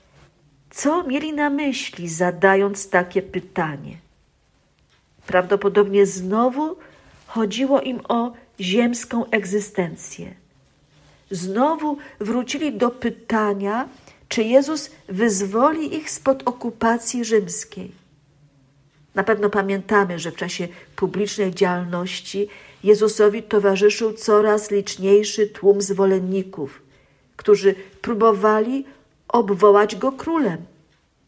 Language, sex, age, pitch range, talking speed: Polish, female, 50-69, 180-230 Hz, 85 wpm